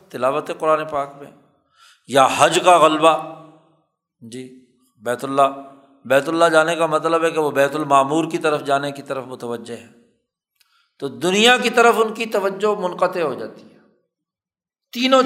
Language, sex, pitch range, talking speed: Urdu, male, 145-200 Hz, 160 wpm